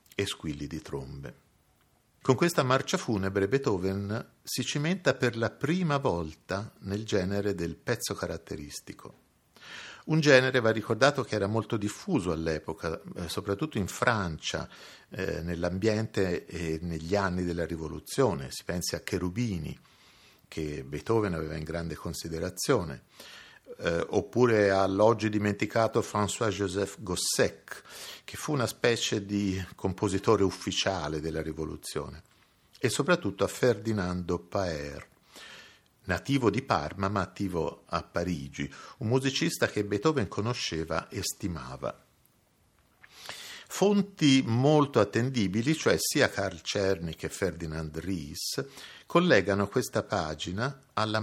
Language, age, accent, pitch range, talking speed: Italian, 50-69, native, 85-115 Hz, 110 wpm